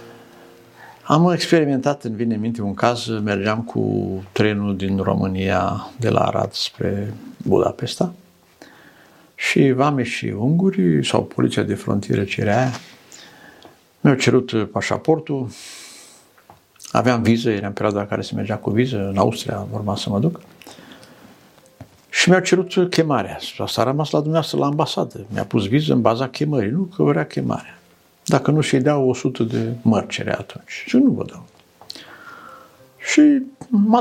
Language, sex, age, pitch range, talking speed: Romanian, male, 60-79, 105-150 Hz, 150 wpm